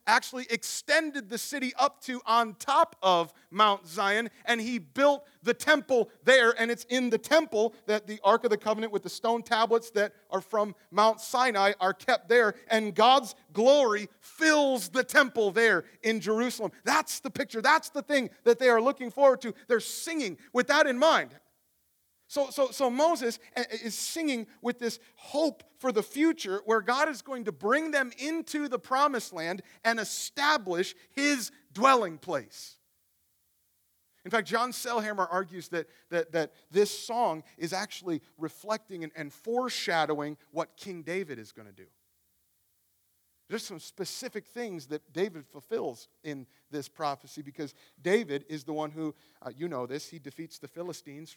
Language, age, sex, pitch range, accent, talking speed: English, 40-59, male, 165-255 Hz, American, 165 wpm